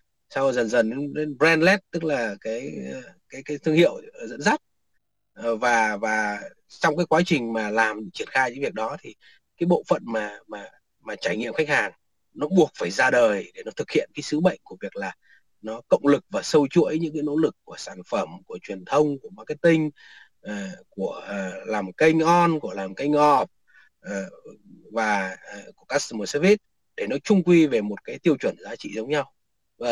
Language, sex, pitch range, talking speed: Vietnamese, male, 115-170 Hz, 195 wpm